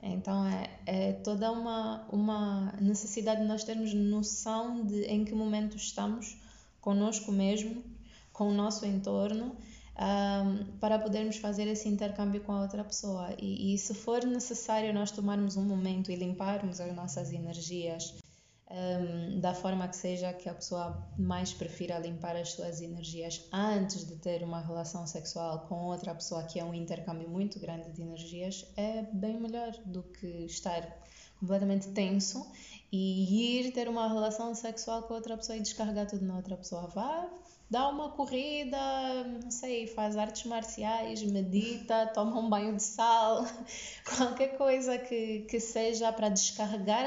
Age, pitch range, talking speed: 20-39, 185-225 Hz, 155 wpm